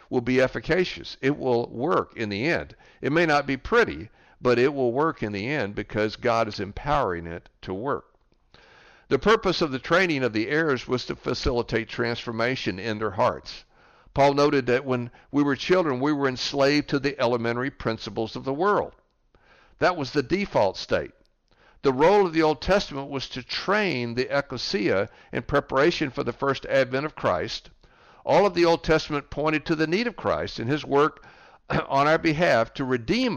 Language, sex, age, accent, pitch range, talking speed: English, male, 60-79, American, 120-155 Hz, 185 wpm